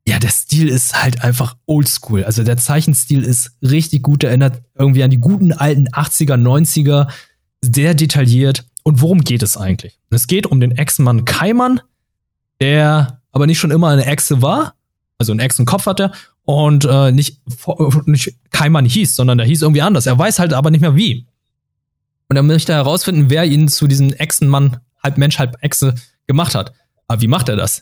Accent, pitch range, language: German, 125-155 Hz, German